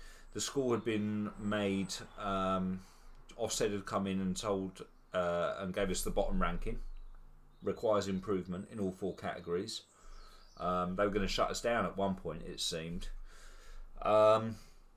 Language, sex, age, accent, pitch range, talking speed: English, male, 30-49, British, 95-110 Hz, 155 wpm